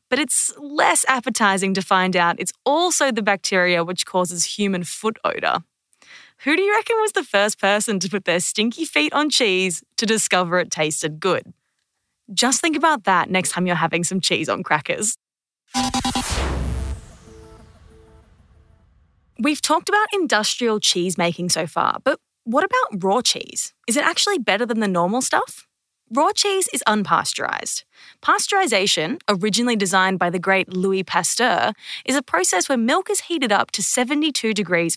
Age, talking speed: 20-39, 160 wpm